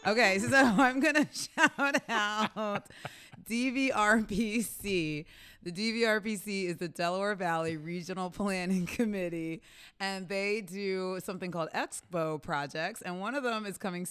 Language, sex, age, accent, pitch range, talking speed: English, female, 30-49, American, 140-185 Hz, 130 wpm